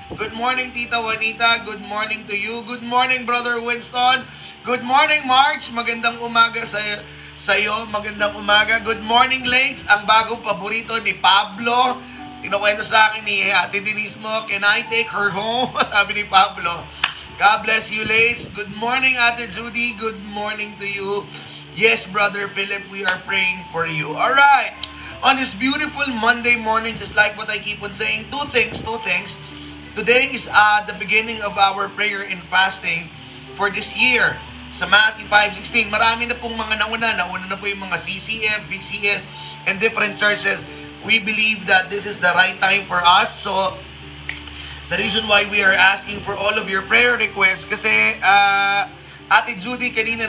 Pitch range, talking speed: 195-230 Hz, 170 wpm